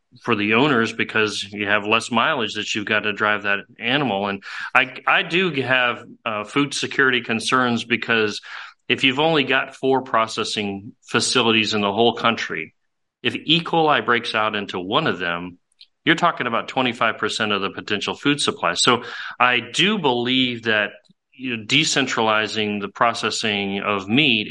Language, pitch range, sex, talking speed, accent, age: English, 110-135 Hz, male, 160 wpm, American, 30-49